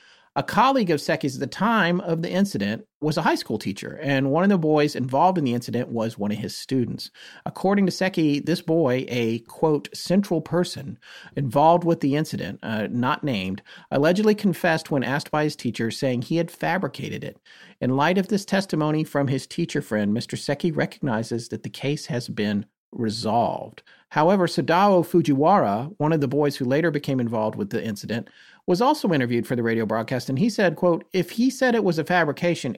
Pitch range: 125-170 Hz